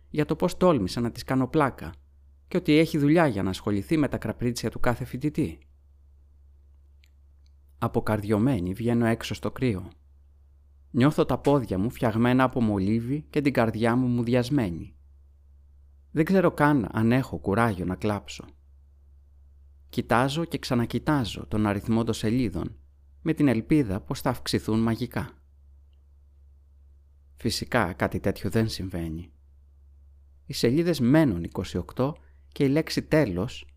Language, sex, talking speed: Greek, male, 130 wpm